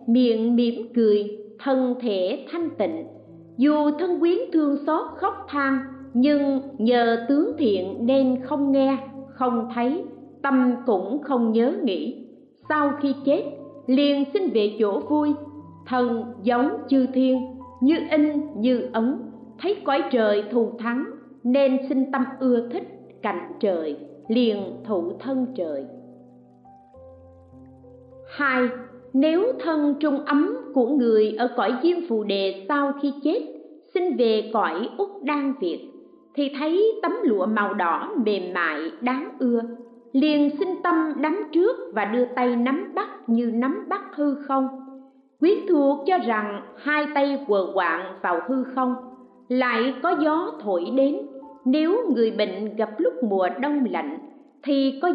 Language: Vietnamese